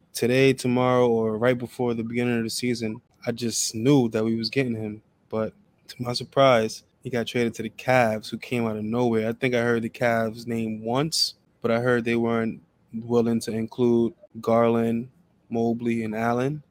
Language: English